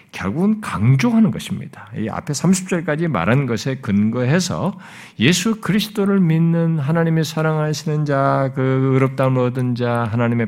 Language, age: Korean, 50-69